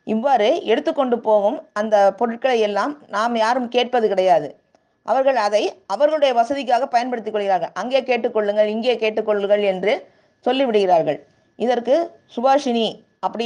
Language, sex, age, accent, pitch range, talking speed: Tamil, female, 20-39, native, 205-245 Hz, 110 wpm